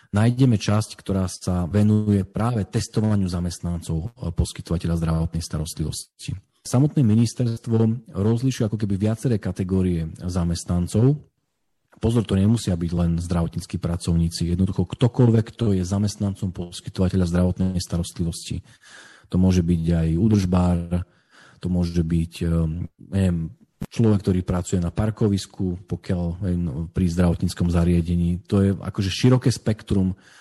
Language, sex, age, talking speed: Slovak, male, 40-59, 110 wpm